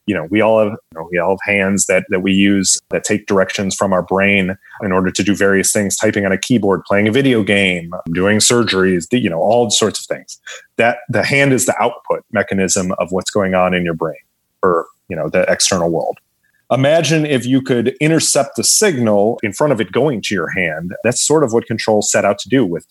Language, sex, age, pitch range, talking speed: English, male, 30-49, 95-115 Hz, 230 wpm